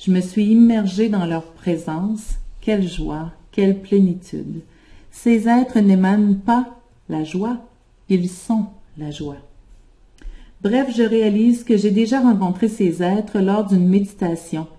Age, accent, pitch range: 40-59, Canadian, 175-215 Hz